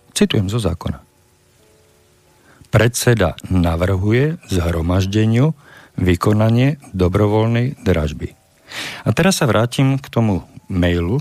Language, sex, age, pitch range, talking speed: Slovak, male, 50-69, 95-130 Hz, 85 wpm